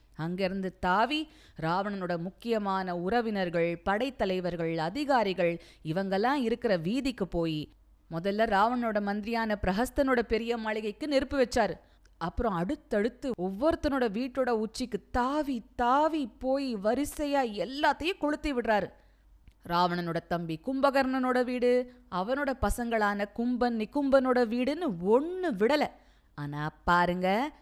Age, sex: 20-39, female